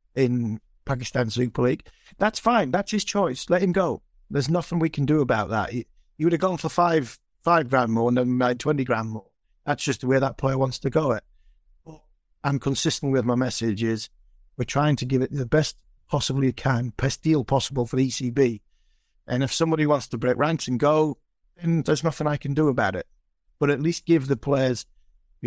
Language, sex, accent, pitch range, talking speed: English, male, British, 120-145 Hz, 215 wpm